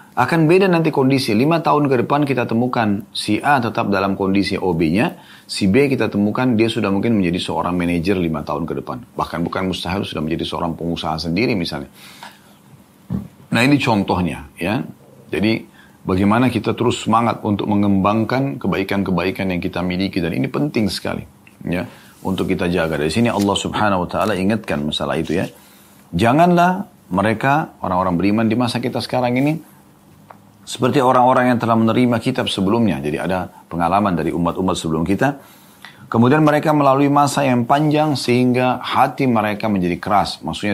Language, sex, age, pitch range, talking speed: Indonesian, male, 30-49, 90-125 Hz, 160 wpm